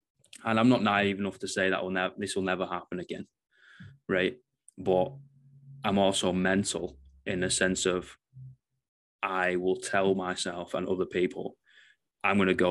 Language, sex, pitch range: English, male, 90-100 Hz